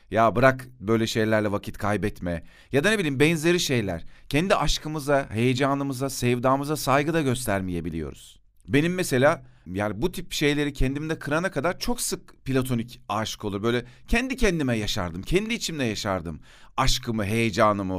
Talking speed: 140 wpm